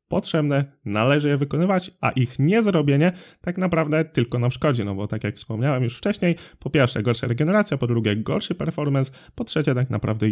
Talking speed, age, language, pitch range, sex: 180 wpm, 20-39, Polish, 110-150 Hz, male